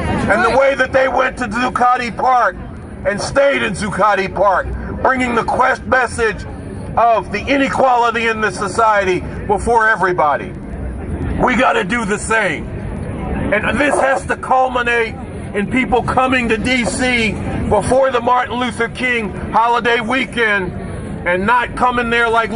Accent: American